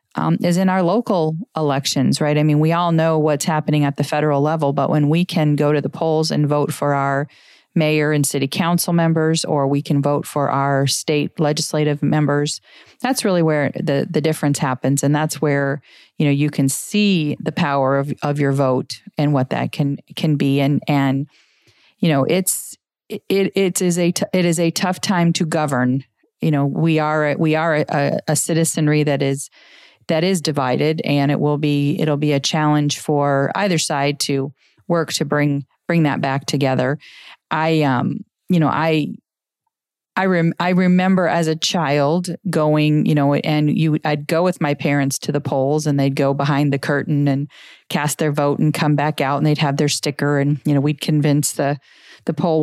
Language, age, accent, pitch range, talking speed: English, 40-59, American, 140-160 Hz, 195 wpm